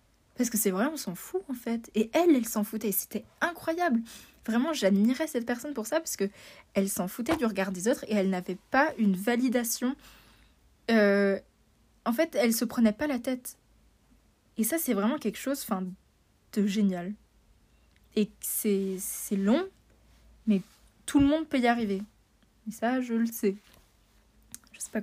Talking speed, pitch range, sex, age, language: 180 wpm, 205-250 Hz, female, 20-39, French